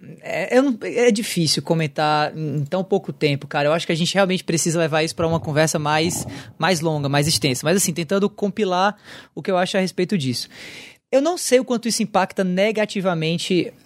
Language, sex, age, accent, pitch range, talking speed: Portuguese, male, 20-39, Brazilian, 165-210 Hz, 200 wpm